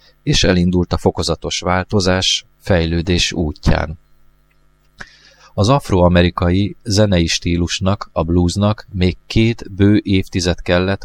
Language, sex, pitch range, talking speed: Hungarian, male, 85-105 Hz, 100 wpm